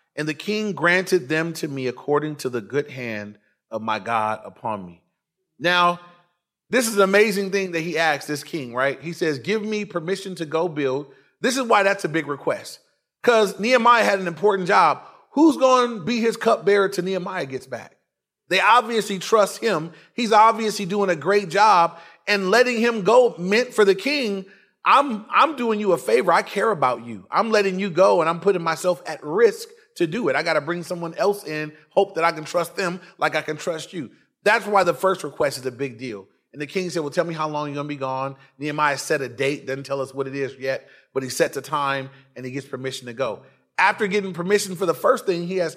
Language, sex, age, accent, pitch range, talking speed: English, male, 30-49, American, 150-200 Hz, 225 wpm